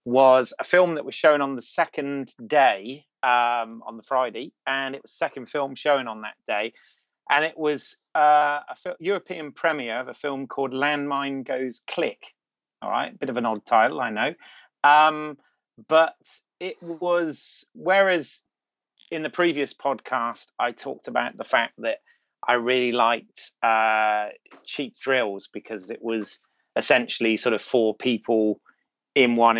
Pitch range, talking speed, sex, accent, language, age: 120-145 Hz, 160 wpm, male, British, English, 30-49